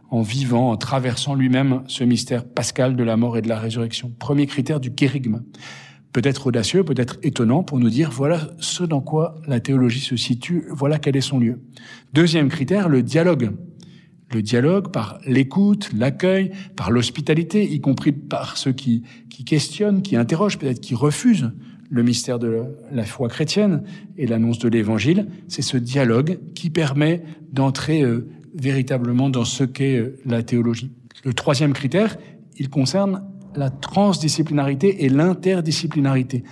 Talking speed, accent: 155 wpm, French